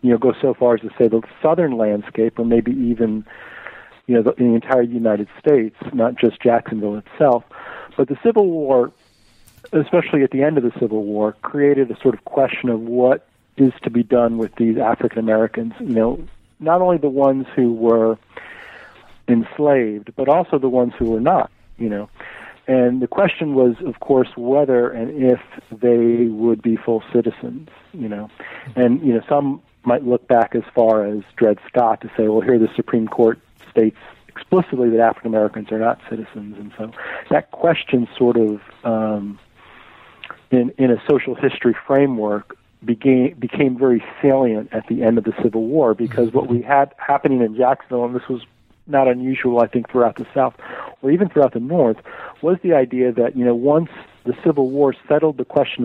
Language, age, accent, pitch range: English, 50-69, American, 115-135 Hz